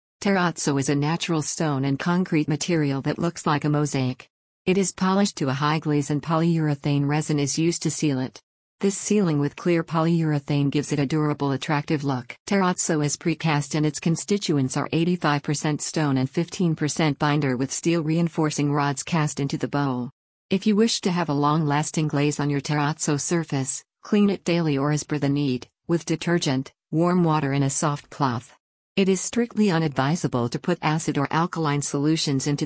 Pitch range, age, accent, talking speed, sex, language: 145-165 Hz, 50-69, American, 180 wpm, female, English